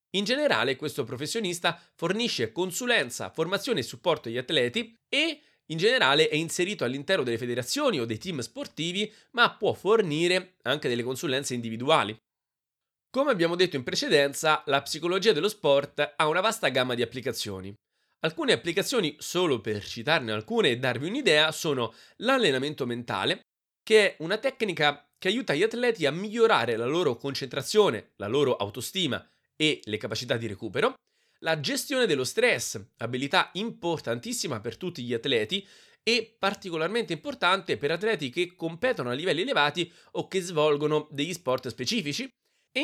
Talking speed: 145 wpm